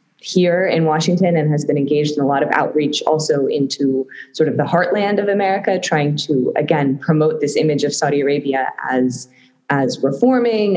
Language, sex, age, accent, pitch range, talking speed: English, female, 20-39, American, 145-190 Hz, 180 wpm